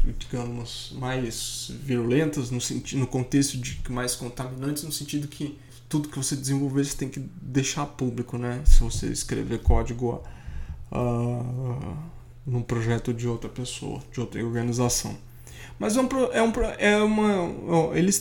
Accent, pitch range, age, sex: Brazilian, 125-165 Hz, 20-39, male